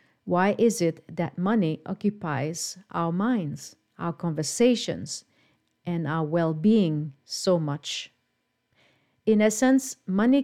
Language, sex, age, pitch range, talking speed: English, female, 50-69, 165-225 Hz, 105 wpm